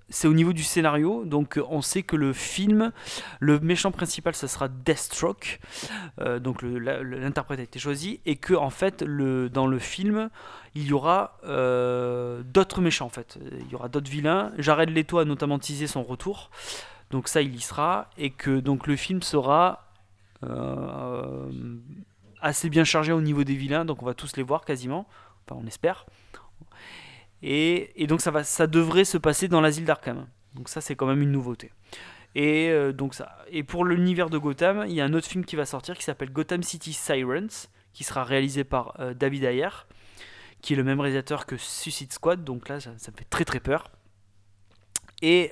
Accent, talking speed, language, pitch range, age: French, 190 wpm, French, 125-160 Hz, 20-39